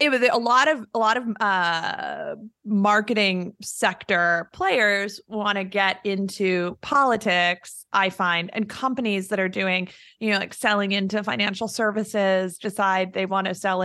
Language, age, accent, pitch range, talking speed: English, 20-39, American, 185-225 Hz, 155 wpm